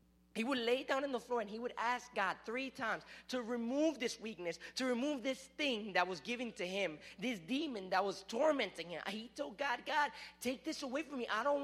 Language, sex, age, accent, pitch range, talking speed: English, male, 30-49, American, 175-260 Hz, 225 wpm